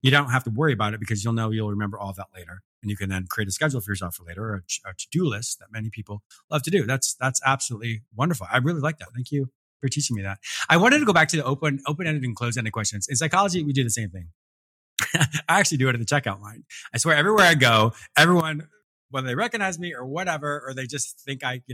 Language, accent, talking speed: English, American, 265 wpm